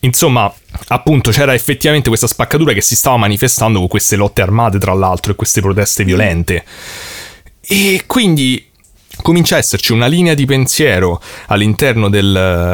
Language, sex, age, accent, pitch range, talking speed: Italian, male, 30-49, native, 100-130 Hz, 145 wpm